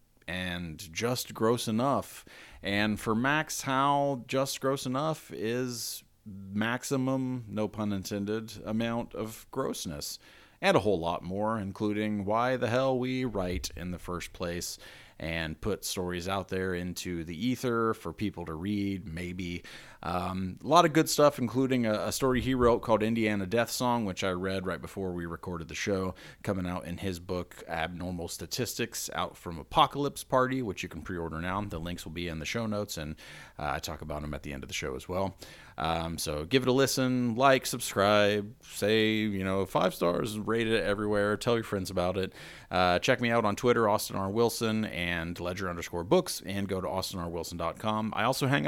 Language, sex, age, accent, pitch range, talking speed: English, male, 30-49, American, 90-115 Hz, 185 wpm